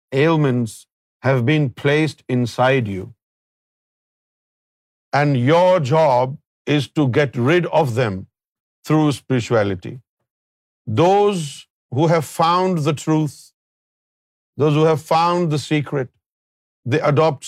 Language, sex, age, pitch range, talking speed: Urdu, male, 50-69, 125-165 Hz, 105 wpm